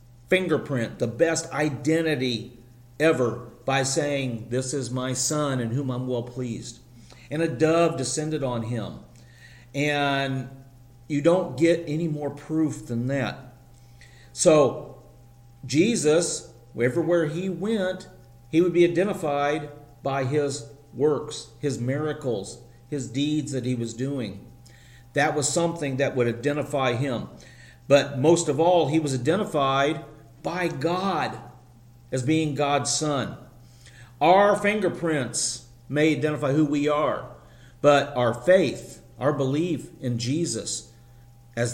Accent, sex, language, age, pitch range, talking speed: American, male, English, 40-59, 120-155 Hz, 125 wpm